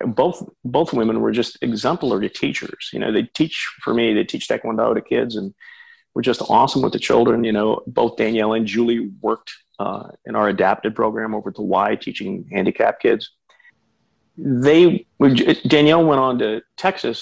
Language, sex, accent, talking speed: English, male, American, 170 wpm